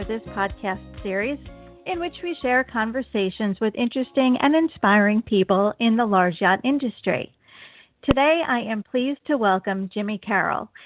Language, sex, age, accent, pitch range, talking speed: English, female, 40-59, American, 200-260 Hz, 145 wpm